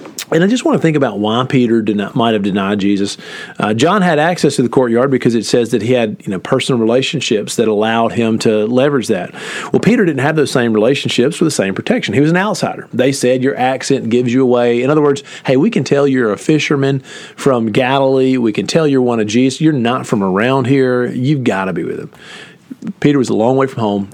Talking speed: 240 wpm